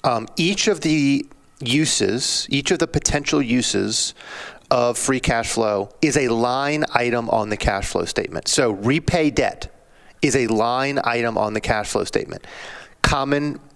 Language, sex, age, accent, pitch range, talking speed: English, male, 30-49, American, 115-140 Hz, 155 wpm